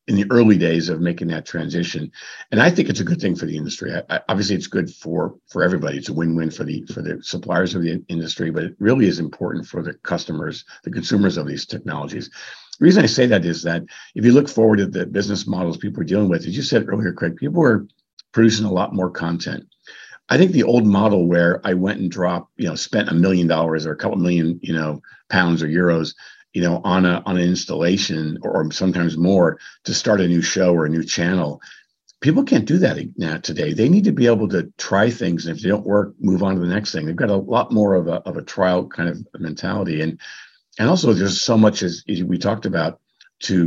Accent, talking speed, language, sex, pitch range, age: American, 240 wpm, English, male, 85-100 Hz, 50-69